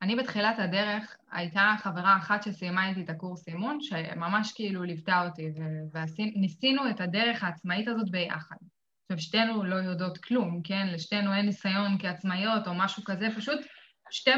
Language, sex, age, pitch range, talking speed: Hebrew, female, 20-39, 185-220 Hz, 150 wpm